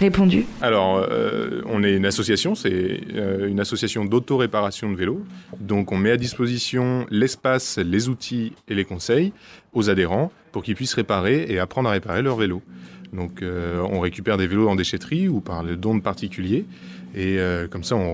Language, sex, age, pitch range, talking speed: French, male, 20-39, 95-120 Hz, 180 wpm